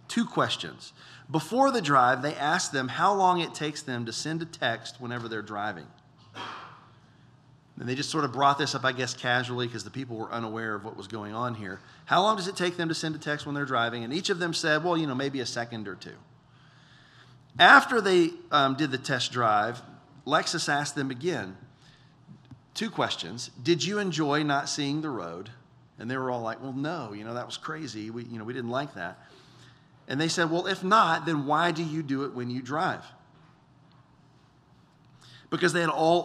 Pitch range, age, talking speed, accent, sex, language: 120-160 Hz, 40-59, 210 wpm, American, male, English